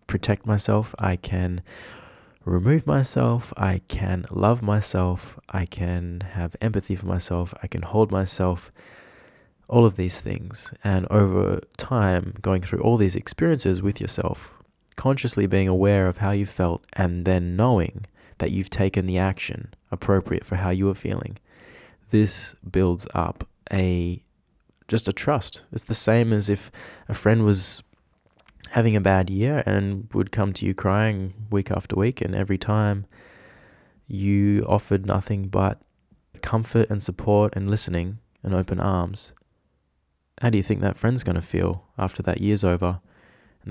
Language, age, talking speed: English, 20-39, 155 wpm